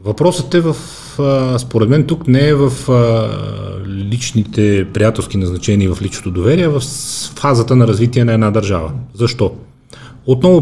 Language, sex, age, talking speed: Bulgarian, male, 30-49, 160 wpm